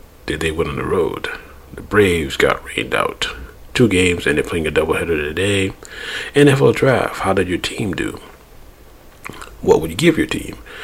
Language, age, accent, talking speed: English, 40-59, American, 175 wpm